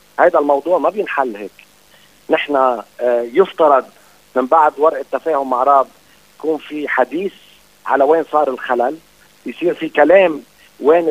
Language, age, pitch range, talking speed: English, 50-69, 135-160 Hz, 125 wpm